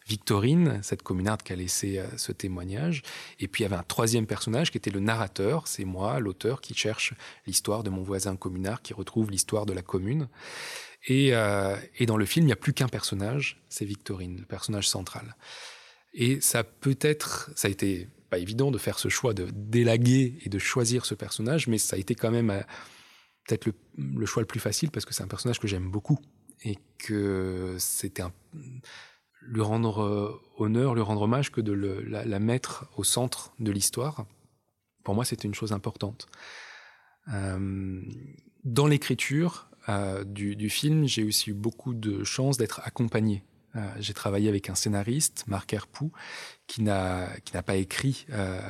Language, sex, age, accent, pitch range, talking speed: French, male, 20-39, French, 100-120 Hz, 185 wpm